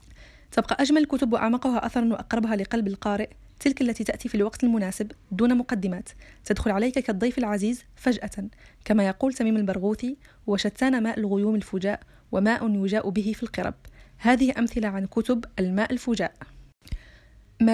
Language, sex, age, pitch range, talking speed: Arabic, female, 20-39, 205-250 Hz, 140 wpm